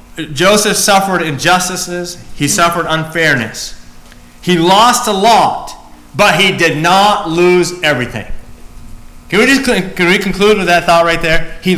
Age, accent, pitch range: 40-59, American, 110-170 Hz